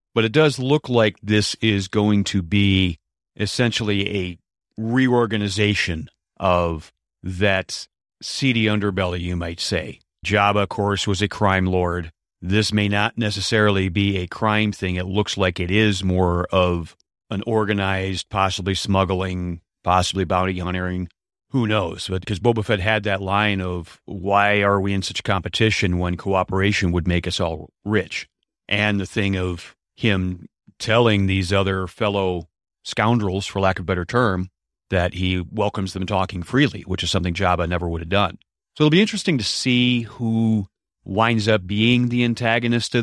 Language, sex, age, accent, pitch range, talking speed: English, male, 40-59, American, 90-105 Hz, 160 wpm